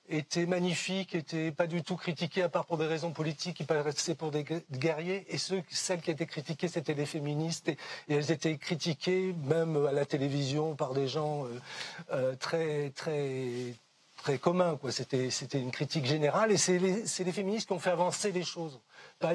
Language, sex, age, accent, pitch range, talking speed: French, male, 40-59, French, 150-185 Hz, 200 wpm